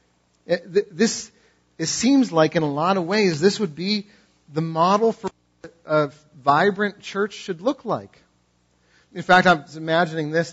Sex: male